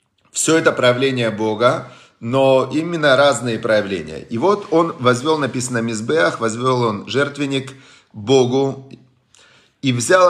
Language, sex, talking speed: Russian, male, 120 wpm